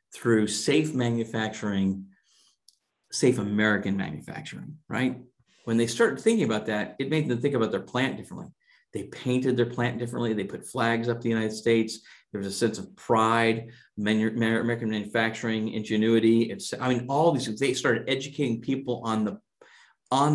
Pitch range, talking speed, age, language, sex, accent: 115-150 Hz, 160 wpm, 50-69, English, male, American